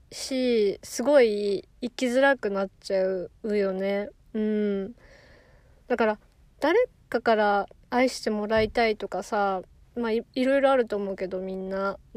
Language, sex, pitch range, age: Japanese, female, 210-255 Hz, 20-39